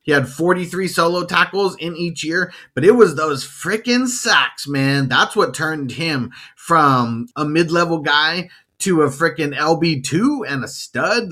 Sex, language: male, English